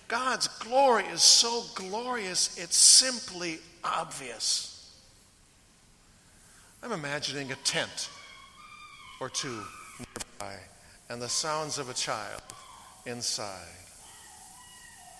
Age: 60-79